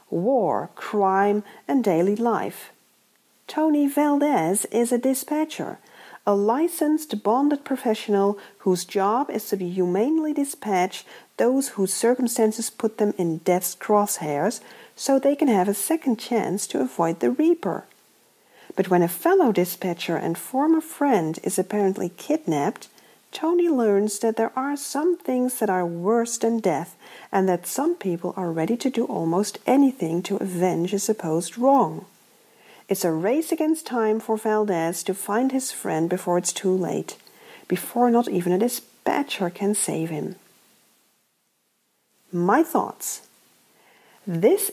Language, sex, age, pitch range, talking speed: English, female, 50-69, 185-265 Hz, 140 wpm